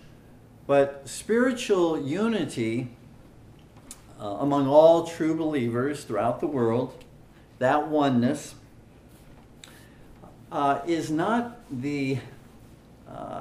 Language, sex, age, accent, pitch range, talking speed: English, male, 50-69, American, 115-145 Hz, 75 wpm